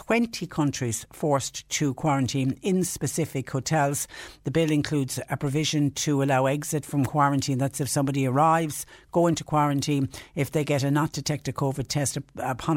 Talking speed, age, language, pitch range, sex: 155 wpm, 60-79, English, 140-160 Hz, female